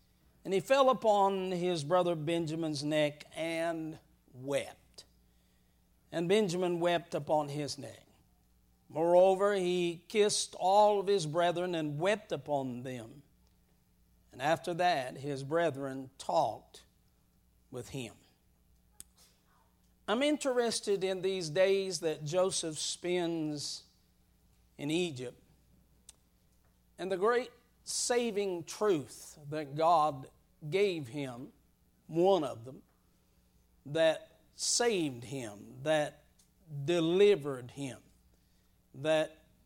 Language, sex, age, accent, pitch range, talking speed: English, male, 50-69, American, 135-185 Hz, 95 wpm